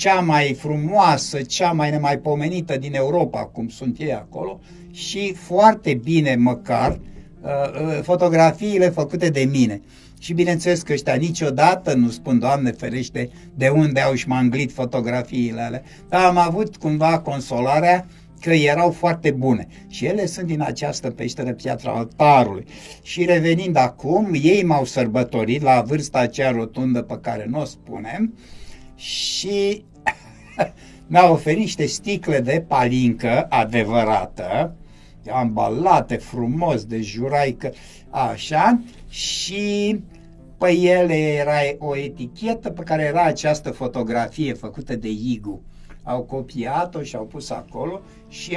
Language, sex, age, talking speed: Romanian, male, 60-79, 125 wpm